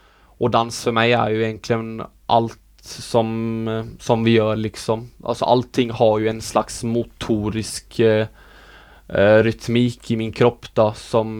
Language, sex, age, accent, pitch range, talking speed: Swedish, male, 20-39, Norwegian, 110-120 Hz, 145 wpm